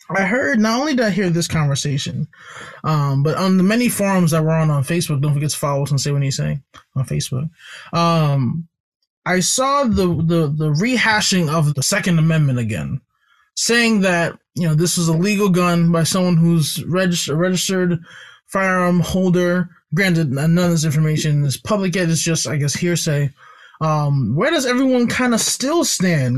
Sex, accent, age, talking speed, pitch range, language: male, American, 20-39, 185 wpm, 155-220 Hz, English